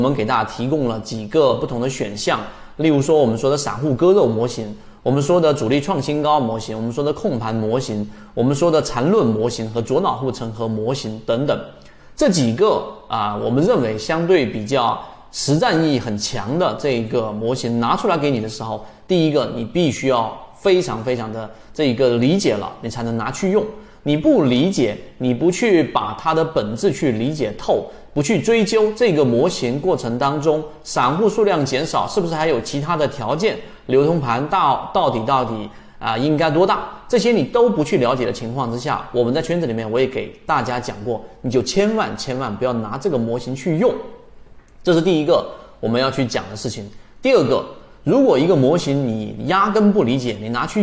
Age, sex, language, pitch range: 30-49, male, Chinese, 115-160 Hz